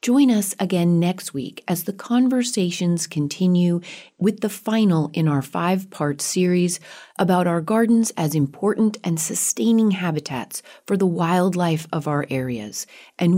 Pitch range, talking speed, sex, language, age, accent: 145-205 Hz, 140 wpm, female, English, 30-49, American